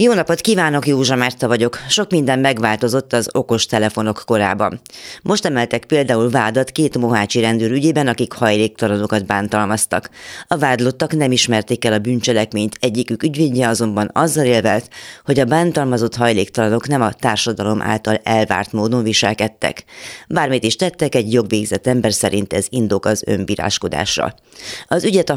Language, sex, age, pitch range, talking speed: Hungarian, female, 30-49, 105-135 Hz, 145 wpm